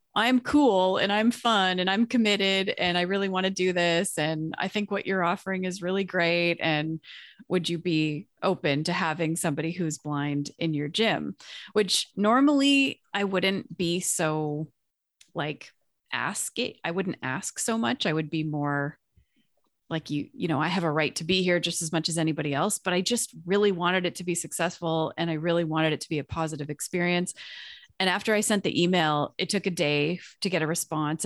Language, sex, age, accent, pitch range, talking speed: English, female, 30-49, American, 155-185 Hz, 200 wpm